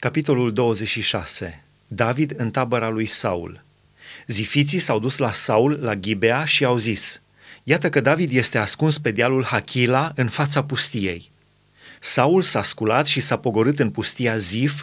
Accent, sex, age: native, male, 30-49